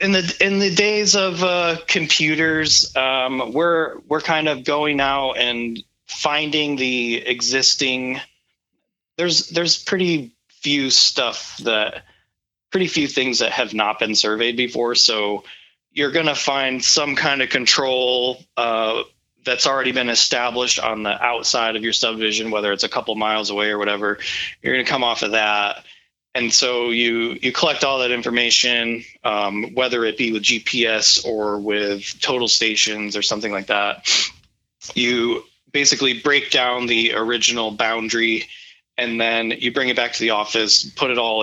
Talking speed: 155 wpm